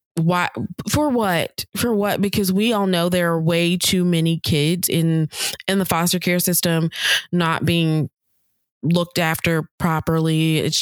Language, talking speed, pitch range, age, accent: English, 150 wpm, 160-185 Hz, 20-39, American